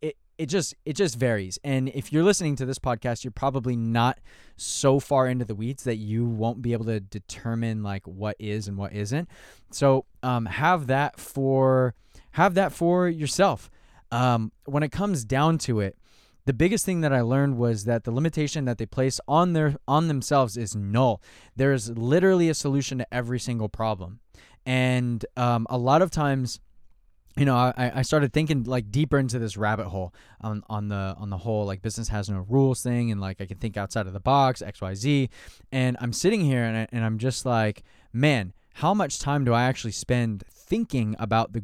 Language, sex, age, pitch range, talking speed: English, male, 20-39, 110-135 Hz, 200 wpm